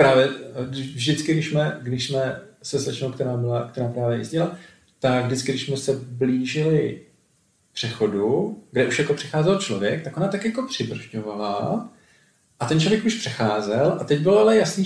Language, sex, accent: Czech, male, native